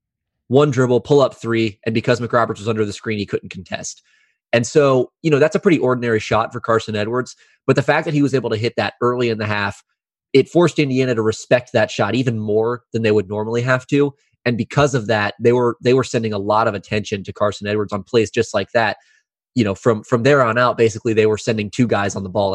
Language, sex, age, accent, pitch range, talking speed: English, male, 20-39, American, 105-120 Hz, 245 wpm